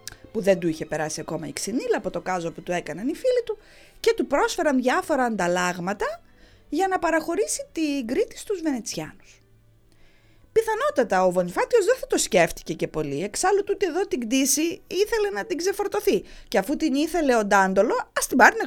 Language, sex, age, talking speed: English, female, 20-39, 185 wpm